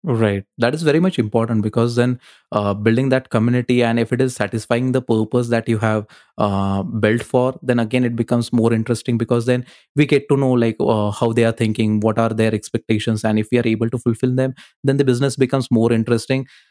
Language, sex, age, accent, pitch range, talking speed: Hindi, male, 20-39, native, 110-125 Hz, 220 wpm